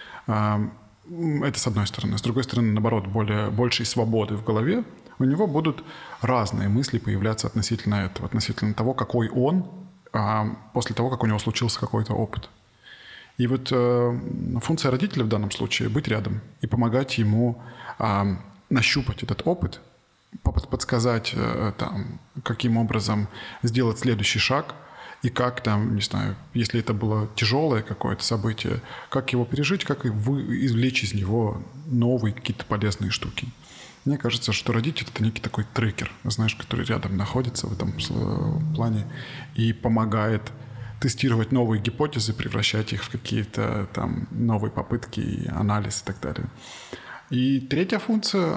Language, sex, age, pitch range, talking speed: Russian, male, 20-39, 110-130 Hz, 135 wpm